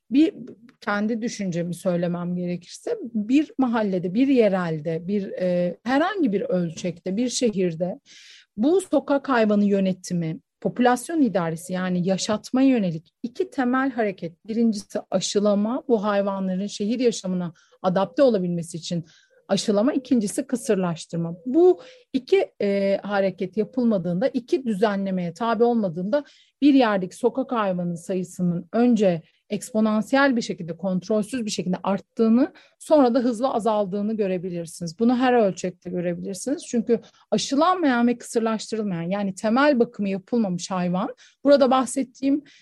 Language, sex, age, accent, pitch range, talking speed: Turkish, female, 40-59, native, 185-250 Hz, 115 wpm